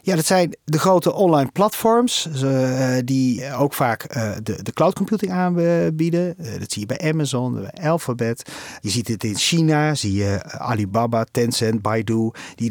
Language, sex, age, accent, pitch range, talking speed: Dutch, male, 40-59, Dutch, 120-165 Hz, 145 wpm